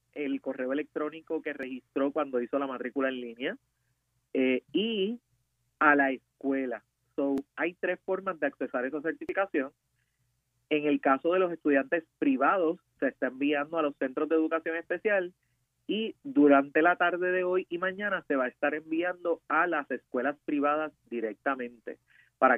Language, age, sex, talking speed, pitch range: Spanish, 30-49, male, 155 wpm, 125-160 Hz